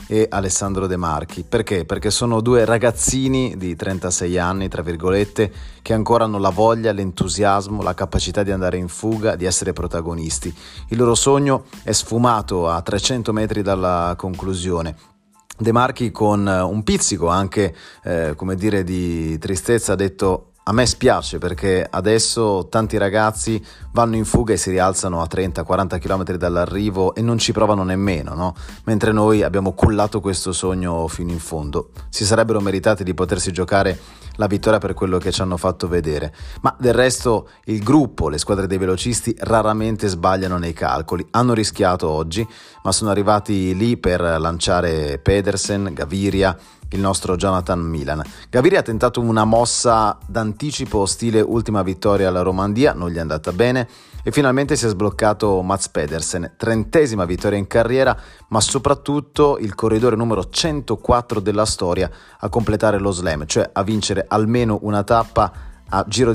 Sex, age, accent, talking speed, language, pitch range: male, 30-49, native, 155 wpm, Italian, 90-110 Hz